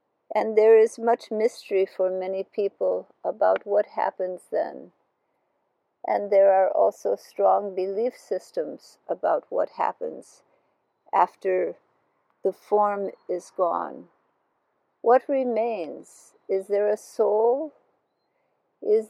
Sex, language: female, English